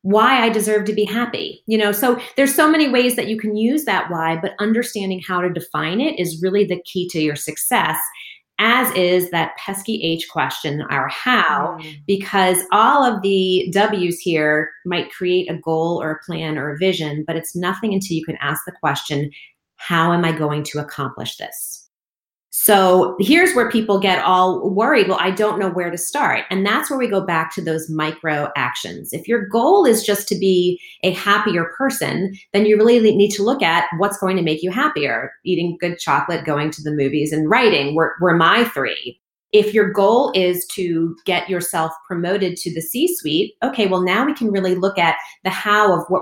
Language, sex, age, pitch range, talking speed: English, female, 30-49, 160-205 Hz, 200 wpm